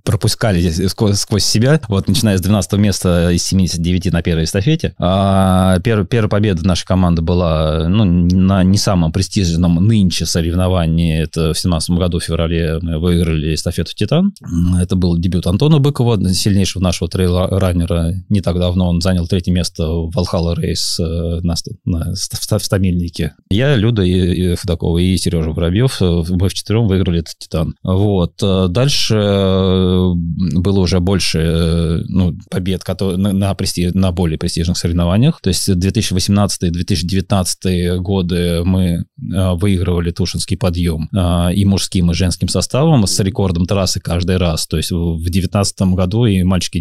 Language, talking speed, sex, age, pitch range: Russian, 145 wpm, male, 20-39, 85-100 Hz